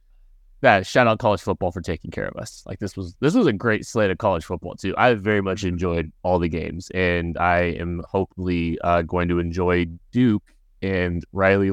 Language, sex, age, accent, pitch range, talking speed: English, male, 20-39, American, 95-120 Hz, 205 wpm